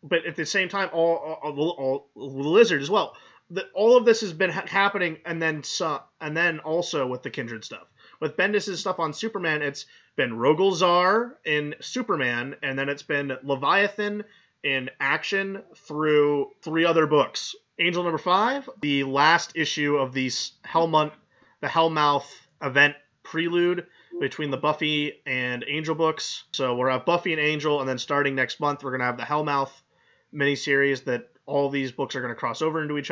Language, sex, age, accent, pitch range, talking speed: English, male, 30-49, American, 135-165 Hz, 185 wpm